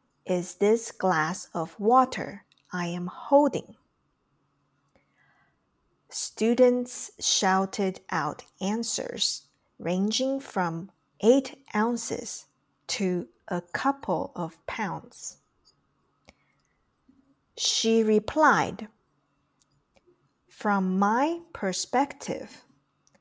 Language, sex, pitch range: Chinese, female, 185-260 Hz